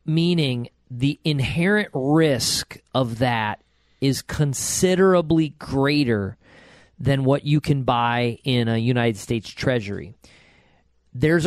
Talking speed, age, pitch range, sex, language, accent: 105 wpm, 40-59, 120-160 Hz, male, English, American